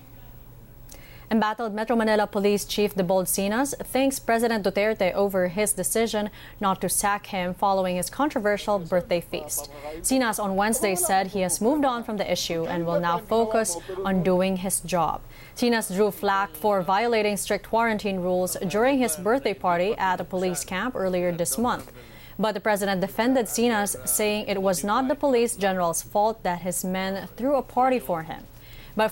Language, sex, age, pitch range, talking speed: English, female, 20-39, 180-220 Hz, 170 wpm